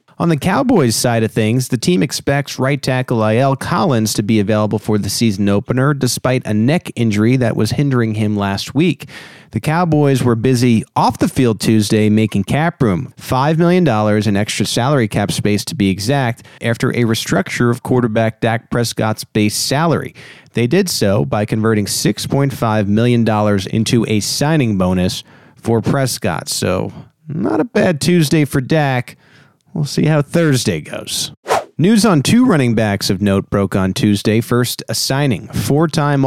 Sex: male